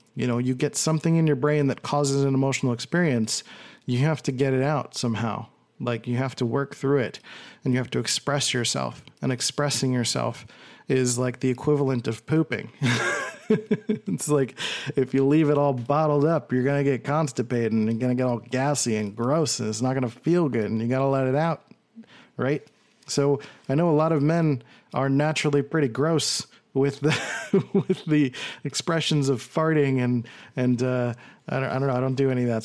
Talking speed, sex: 205 wpm, male